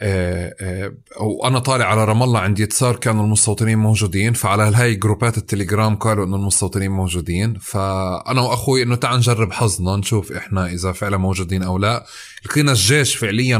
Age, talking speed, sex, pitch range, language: 20-39, 145 wpm, male, 105-130 Hz, Arabic